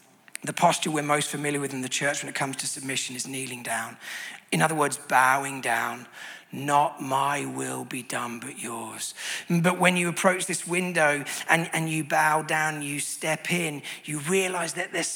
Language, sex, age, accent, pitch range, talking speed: English, male, 40-59, British, 145-165 Hz, 185 wpm